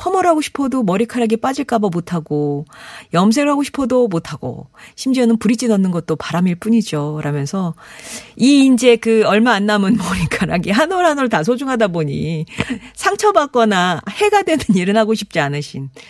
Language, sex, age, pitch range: Korean, female, 40-59, 170-260 Hz